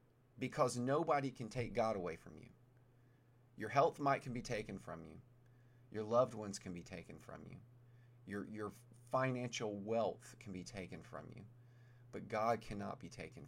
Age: 40-59